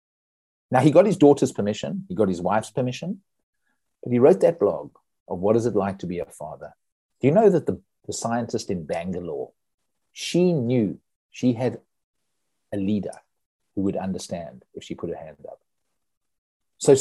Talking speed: 175 wpm